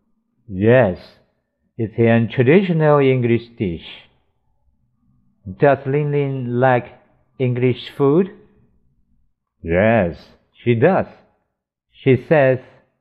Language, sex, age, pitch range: Chinese, male, 60-79, 95-140 Hz